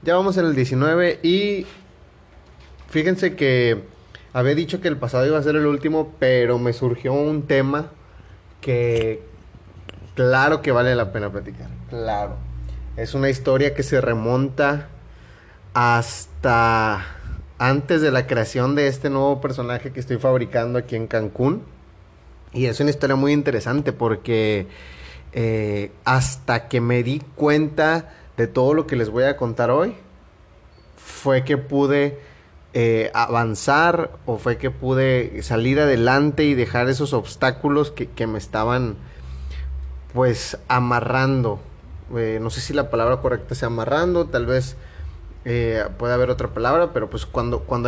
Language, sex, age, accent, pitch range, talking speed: Spanish, male, 30-49, Mexican, 95-140 Hz, 145 wpm